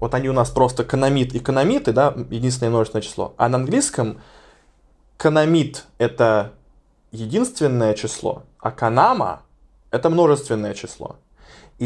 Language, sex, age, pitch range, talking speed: Russian, male, 20-39, 115-135 Hz, 130 wpm